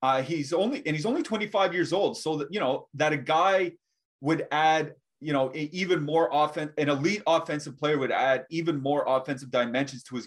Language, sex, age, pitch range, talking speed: English, male, 30-49, 135-170 Hz, 200 wpm